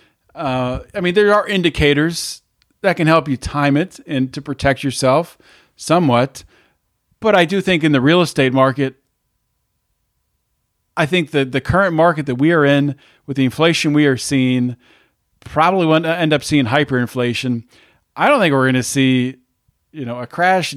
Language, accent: English, American